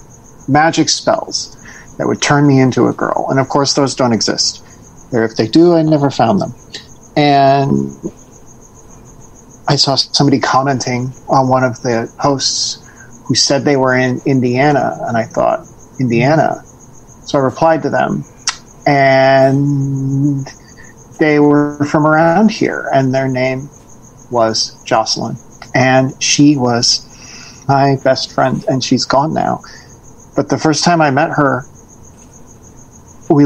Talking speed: 140 wpm